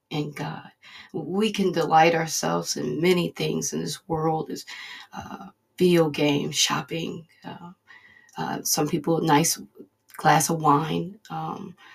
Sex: female